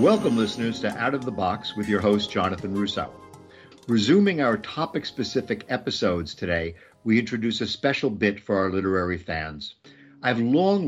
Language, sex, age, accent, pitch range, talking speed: English, male, 50-69, American, 95-120 Hz, 155 wpm